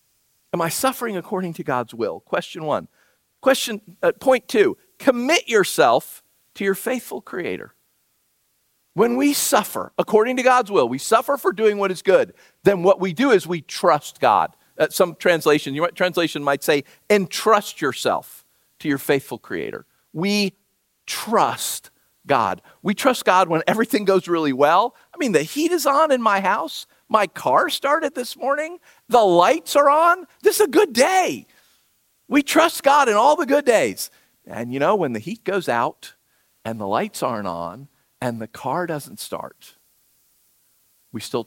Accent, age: American, 50-69